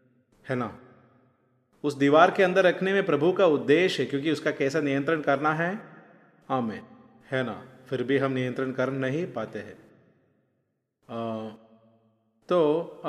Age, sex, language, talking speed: 30-49, male, Malayalam, 140 wpm